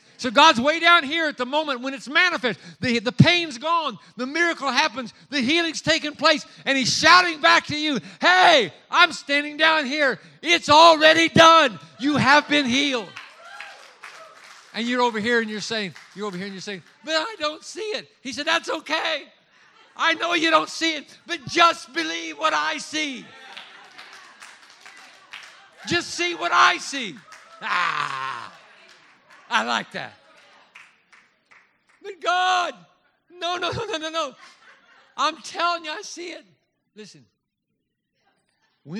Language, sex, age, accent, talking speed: English, male, 60-79, American, 150 wpm